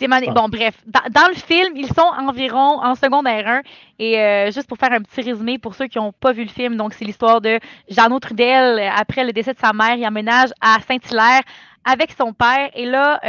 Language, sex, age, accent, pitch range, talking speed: French, female, 20-39, Canadian, 220-265 Hz, 220 wpm